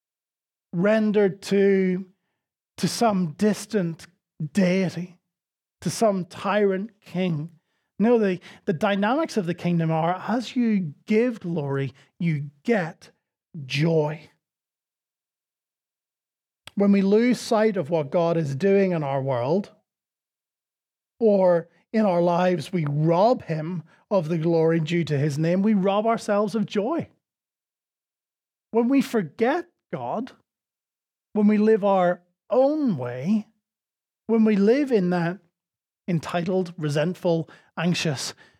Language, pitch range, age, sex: English, 160-210 Hz, 30-49, male